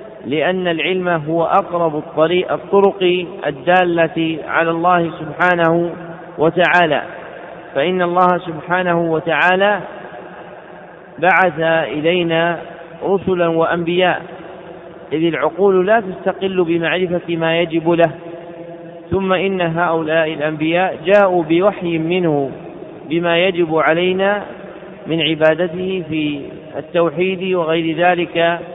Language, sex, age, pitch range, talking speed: Arabic, male, 50-69, 165-185 Hz, 90 wpm